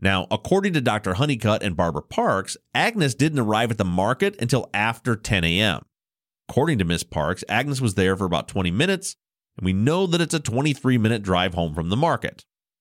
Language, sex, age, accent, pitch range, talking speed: English, male, 30-49, American, 95-140 Hz, 190 wpm